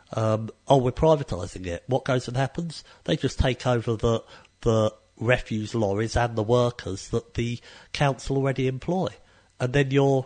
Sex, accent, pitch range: male, British, 105-135 Hz